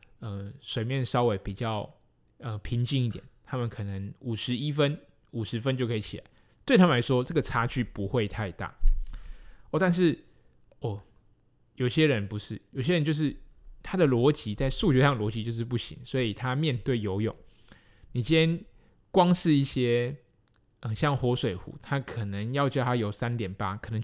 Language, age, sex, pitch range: Chinese, 20-39, male, 105-135 Hz